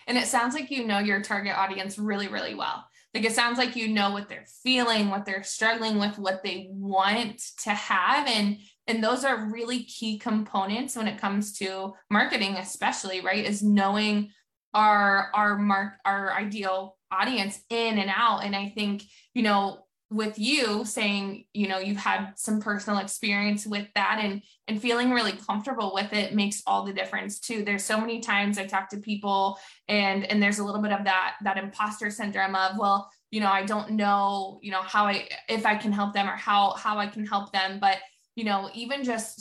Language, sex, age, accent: English, female, 20-39, American